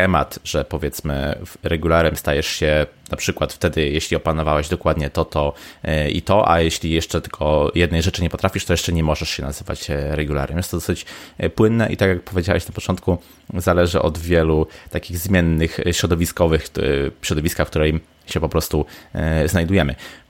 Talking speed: 155 wpm